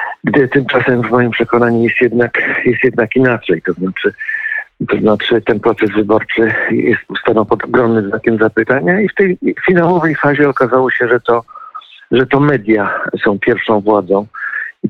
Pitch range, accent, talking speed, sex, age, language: 105-130 Hz, native, 155 wpm, male, 50-69, Polish